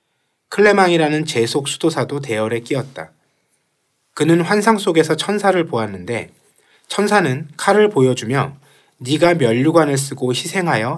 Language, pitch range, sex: Korean, 125-175 Hz, male